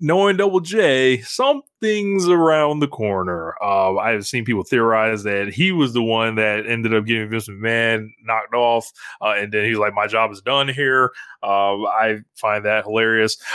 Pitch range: 100-130 Hz